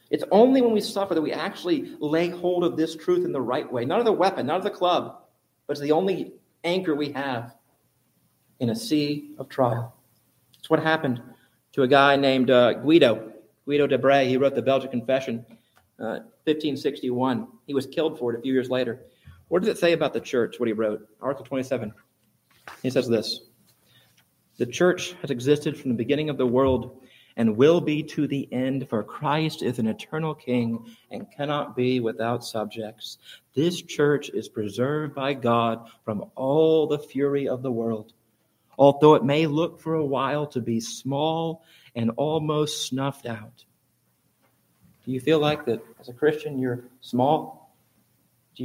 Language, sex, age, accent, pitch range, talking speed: English, male, 40-59, American, 125-150 Hz, 180 wpm